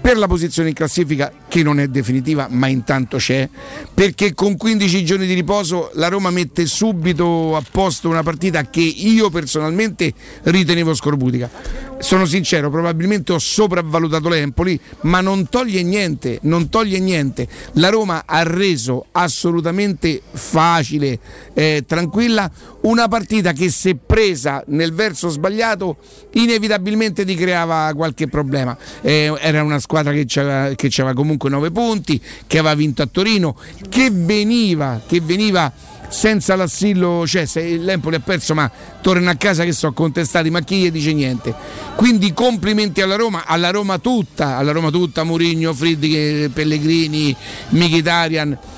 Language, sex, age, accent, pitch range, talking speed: Italian, male, 50-69, native, 150-195 Hz, 145 wpm